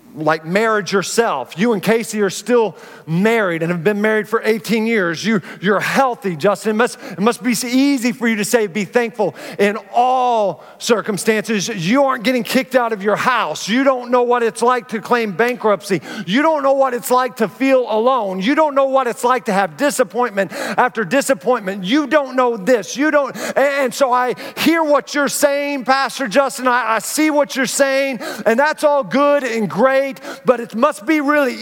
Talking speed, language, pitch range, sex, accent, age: 195 wpm, English, 190-255 Hz, male, American, 40-59